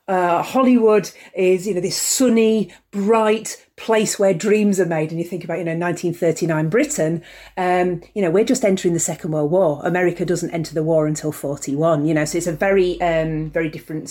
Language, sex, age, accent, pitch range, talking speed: English, female, 40-59, British, 170-205 Hz, 215 wpm